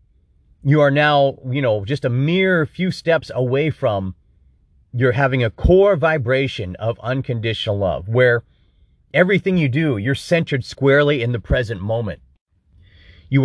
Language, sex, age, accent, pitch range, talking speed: English, male, 40-59, American, 100-145 Hz, 145 wpm